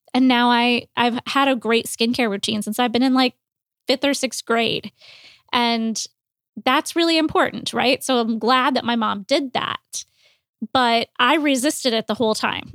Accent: American